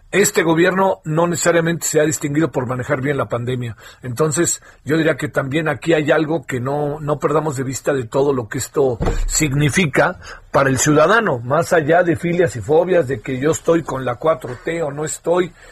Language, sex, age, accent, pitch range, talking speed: Spanish, male, 40-59, Mexican, 145-185 Hz, 195 wpm